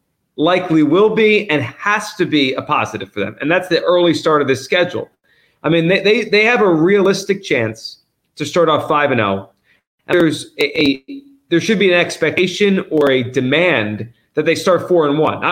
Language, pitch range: English, 135-180 Hz